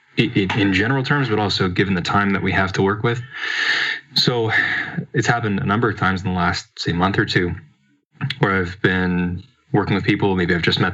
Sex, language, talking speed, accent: male, English, 210 wpm, American